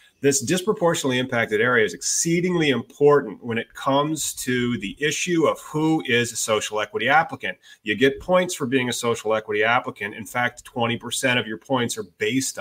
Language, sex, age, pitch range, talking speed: English, male, 30-49, 110-140 Hz, 180 wpm